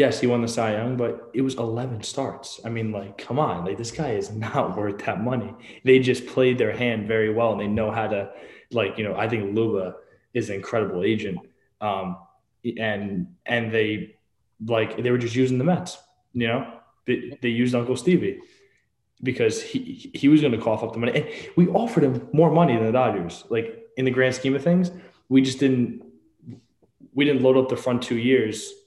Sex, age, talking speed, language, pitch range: male, 20-39, 210 wpm, English, 110-150 Hz